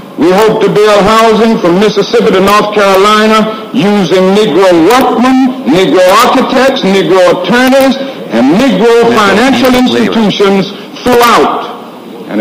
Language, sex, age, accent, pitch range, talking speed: English, male, 60-79, American, 190-230 Hz, 110 wpm